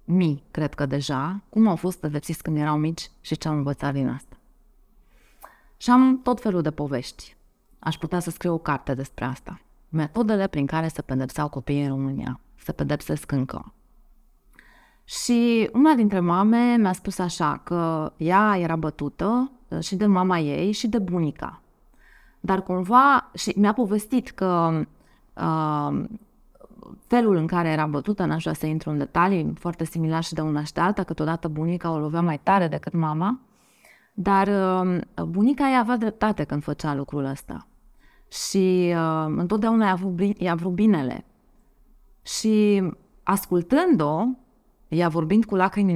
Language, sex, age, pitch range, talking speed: Romanian, female, 20-39, 160-225 Hz, 145 wpm